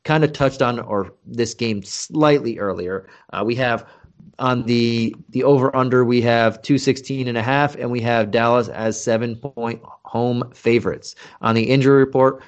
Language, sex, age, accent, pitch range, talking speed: English, male, 30-49, American, 110-125 Hz, 155 wpm